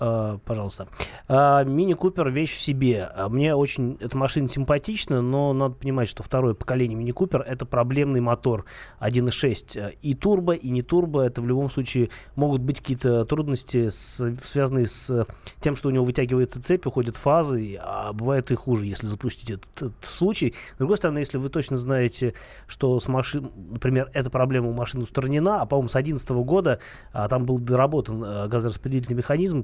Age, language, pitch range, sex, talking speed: 20-39, Russian, 120-140 Hz, male, 165 wpm